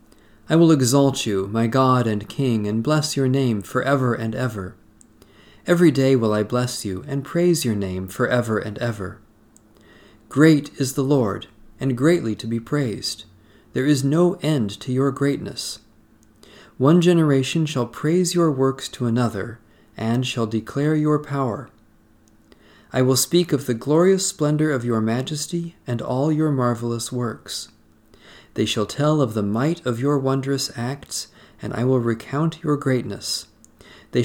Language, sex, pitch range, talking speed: English, male, 110-140 Hz, 155 wpm